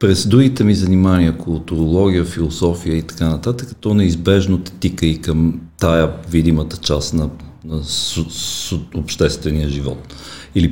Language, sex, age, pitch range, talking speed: Bulgarian, male, 50-69, 80-100 Hz, 140 wpm